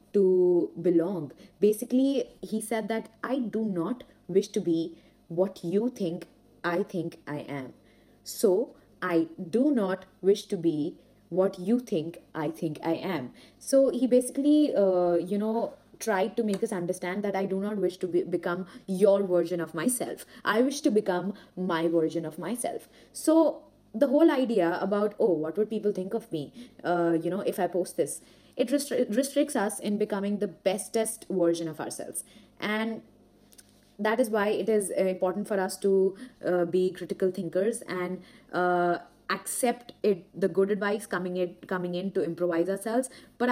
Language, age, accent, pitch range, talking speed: English, 20-39, Indian, 175-225 Hz, 170 wpm